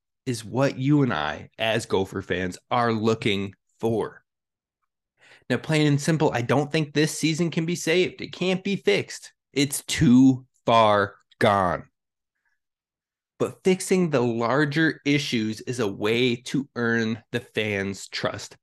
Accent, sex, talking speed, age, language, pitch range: American, male, 140 wpm, 20-39, English, 115-170 Hz